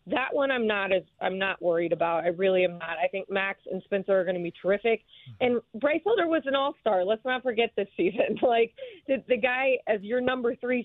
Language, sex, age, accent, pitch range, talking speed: English, female, 30-49, American, 180-225 Hz, 230 wpm